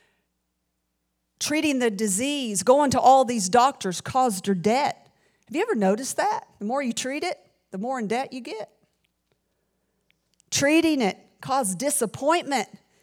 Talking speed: 145 wpm